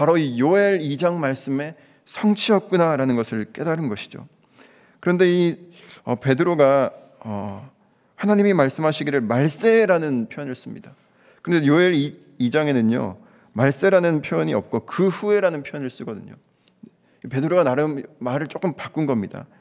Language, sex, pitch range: Korean, male, 130-180 Hz